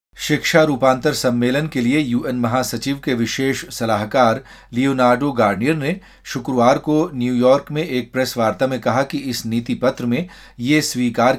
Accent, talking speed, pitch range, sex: native, 155 wpm, 115-140 Hz, male